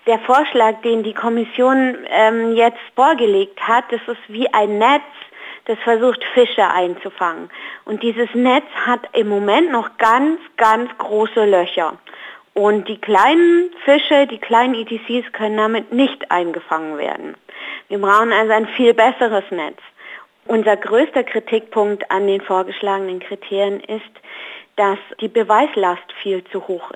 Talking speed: 140 wpm